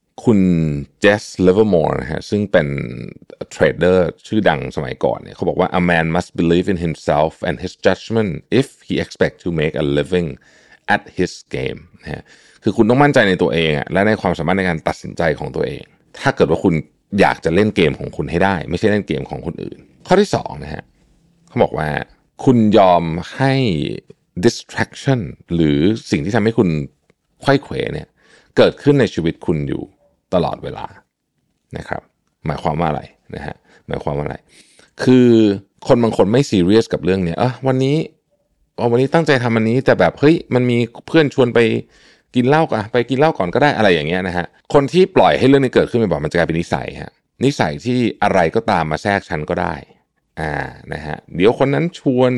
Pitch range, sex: 85-130 Hz, male